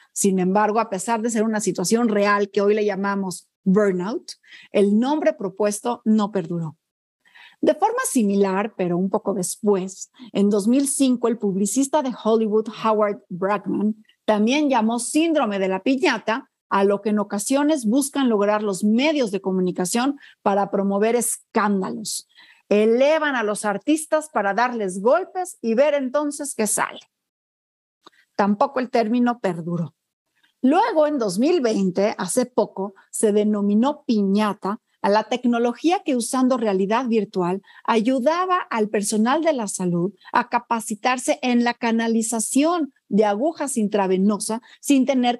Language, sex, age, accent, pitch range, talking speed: Spanish, female, 40-59, Mexican, 200-255 Hz, 135 wpm